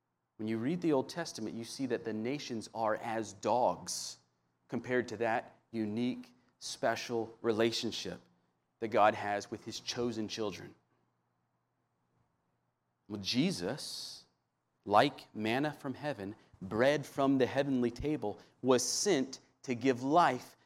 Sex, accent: male, American